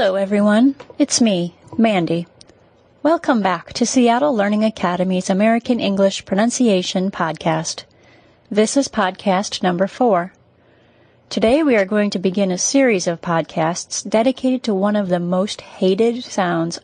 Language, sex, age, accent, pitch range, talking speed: English, female, 30-49, American, 180-235 Hz, 135 wpm